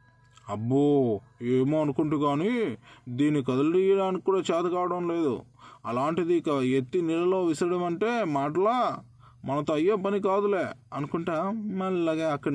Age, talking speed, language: 20-39, 105 wpm, Telugu